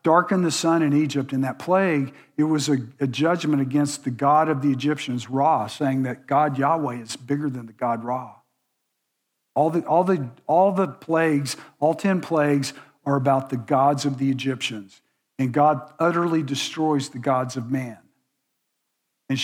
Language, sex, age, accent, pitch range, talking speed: English, male, 50-69, American, 145-185 Hz, 175 wpm